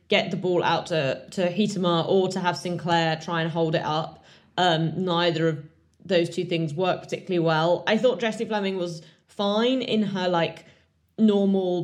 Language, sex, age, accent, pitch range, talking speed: English, female, 20-39, British, 170-200 Hz, 175 wpm